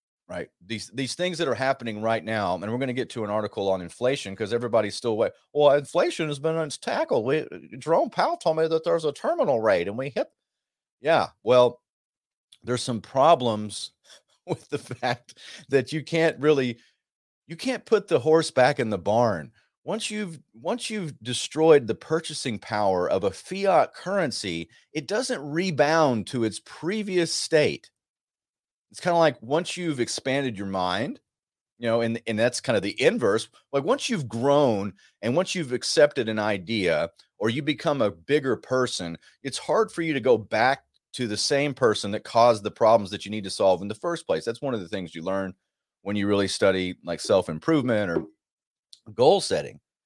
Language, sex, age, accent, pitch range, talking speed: English, male, 40-59, American, 110-155 Hz, 190 wpm